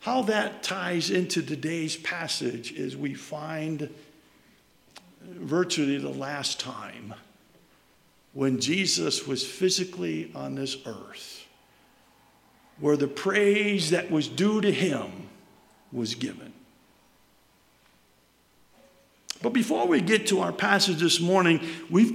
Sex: male